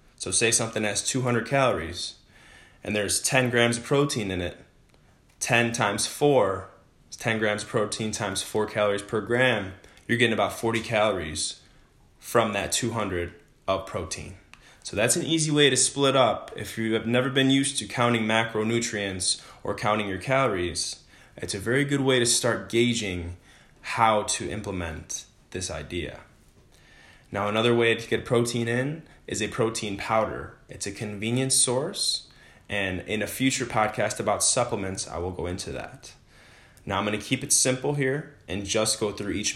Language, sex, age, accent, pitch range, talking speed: English, male, 20-39, American, 100-120 Hz, 165 wpm